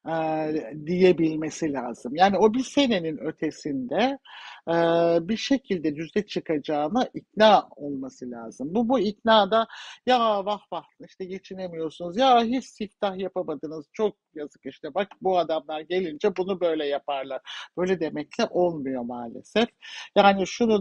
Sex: male